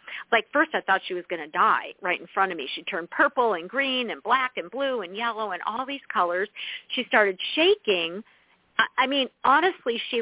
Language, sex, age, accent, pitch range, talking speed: English, female, 50-69, American, 210-300 Hz, 210 wpm